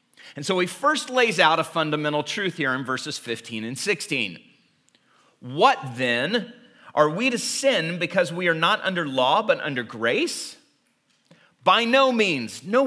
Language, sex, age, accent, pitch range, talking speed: English, male, 40-59, American, 155-230 Hz, 160 wpm